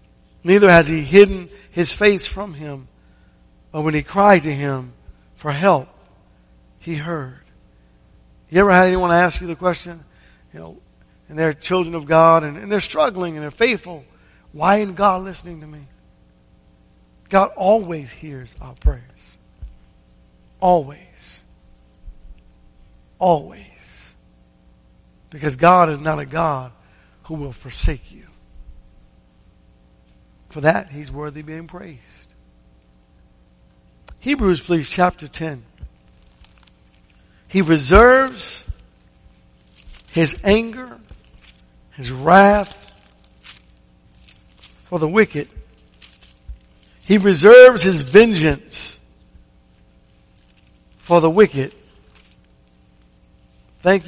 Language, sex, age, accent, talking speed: English, male, 50-69, American, 100 wpm